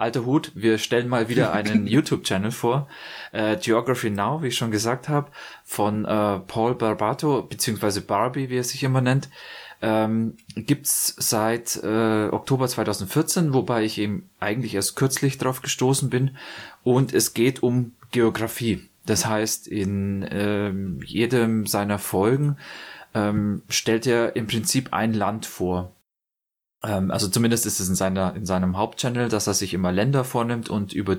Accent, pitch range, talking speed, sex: German, 100-115 Hz, 155 wpm, male